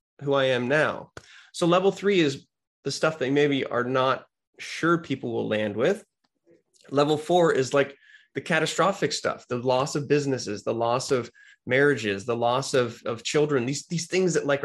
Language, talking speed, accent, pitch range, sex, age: English, 185 wpm, American, 130-160 Hz, male, 20-39